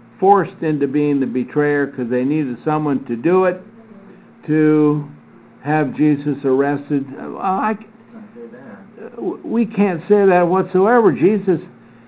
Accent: American